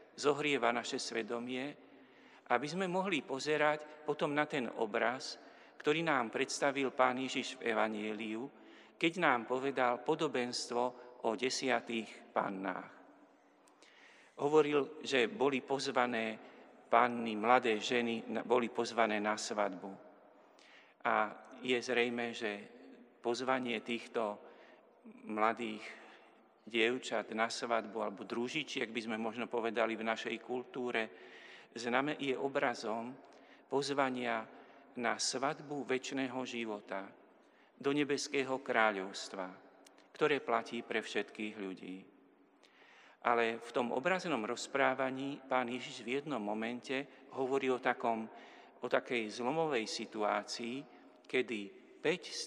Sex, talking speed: male, 105 wpm